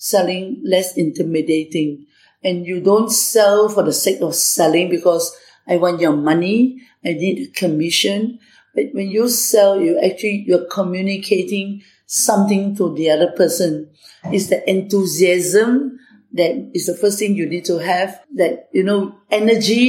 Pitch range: 170-205 Hz